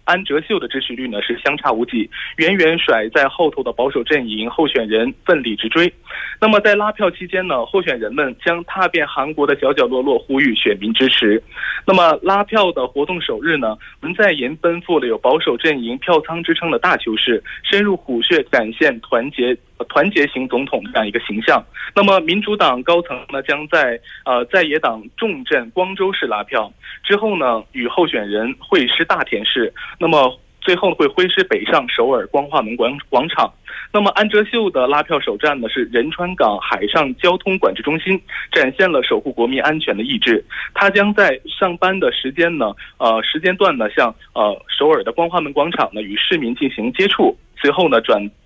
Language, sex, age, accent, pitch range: Korean, male, 20-39, Chinese, 145-200 Hz